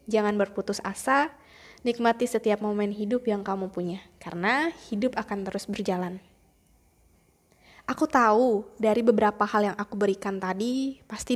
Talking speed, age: 130 wpm, 20-39